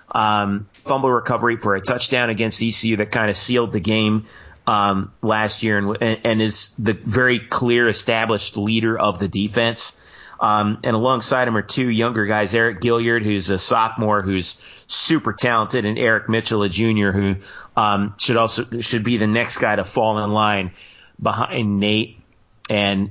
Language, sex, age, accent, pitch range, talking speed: English, male, 30-49, American, 100-115 Hz, 170 wpm